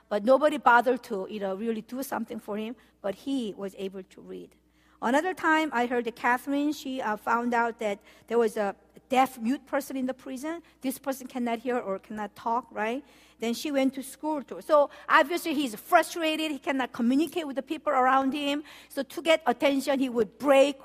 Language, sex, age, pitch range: Korean, female, 50-69, 200-270 Hz